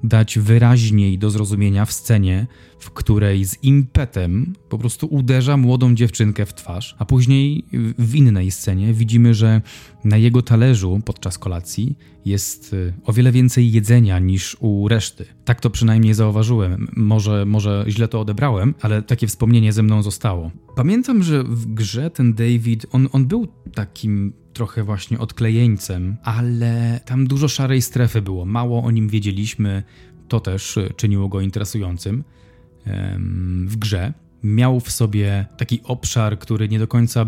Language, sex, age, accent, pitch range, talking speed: Polish, male, 20-39, native, 105-120 Hz, 145 wpm